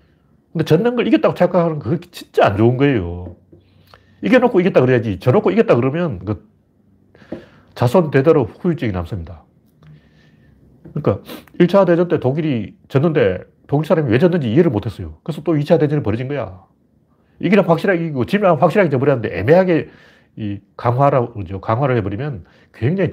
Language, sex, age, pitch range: Korean, male, 40-59, 105-160 Hz